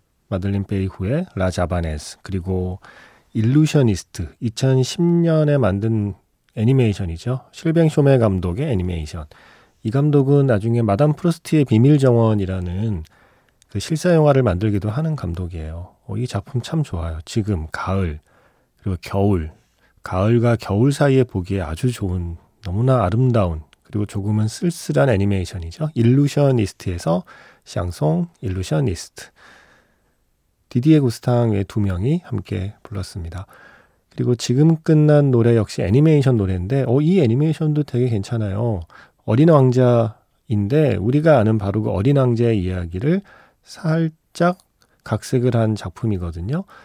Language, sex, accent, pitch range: Korean, male, native, 95-140 Hz